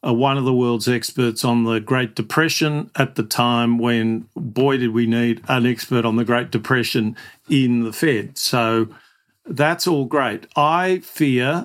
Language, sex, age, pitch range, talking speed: English, male, 50-69, 125-150 Hz, 165 wpm